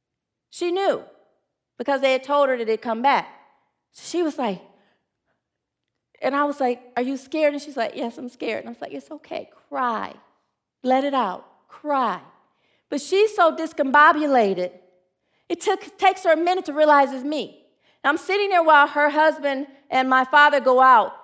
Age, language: 40-59, English